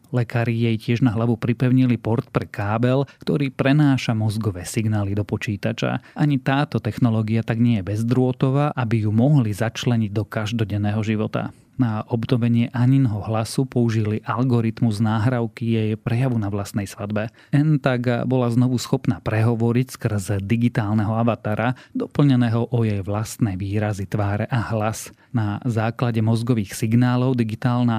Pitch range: 110-130 Hz